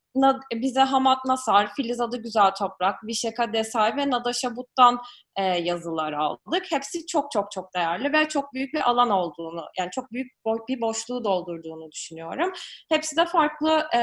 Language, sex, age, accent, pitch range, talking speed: Turkish, female, 20-39, native, 210-280 Hz, 145 wpm